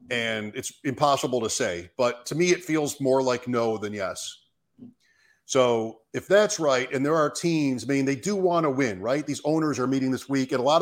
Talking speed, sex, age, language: 220 wpm, male, 40-59, English